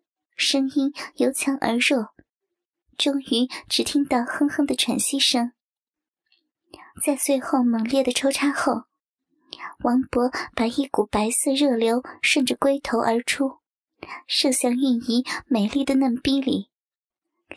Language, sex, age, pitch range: Chinese, male, 10-29, 245-290 Hz